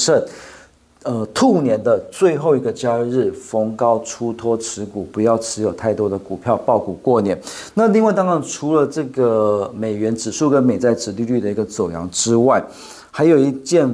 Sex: male